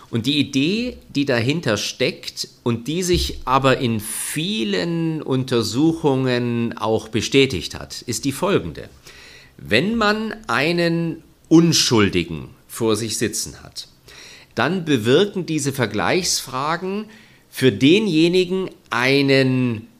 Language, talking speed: German, 100 wpm